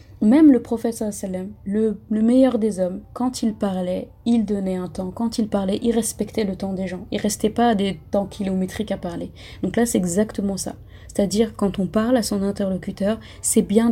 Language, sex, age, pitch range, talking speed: French, female, 30-49, 185-225 Hz, 205 wpm